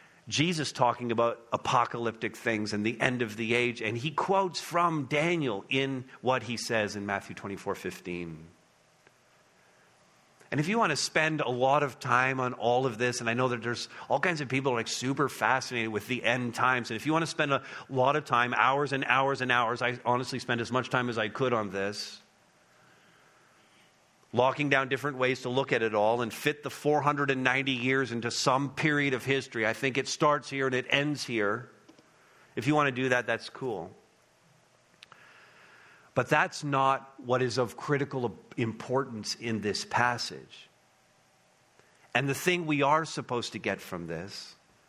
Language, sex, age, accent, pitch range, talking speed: English, male, 40-59, American, 115-140 Hz, 185 wpm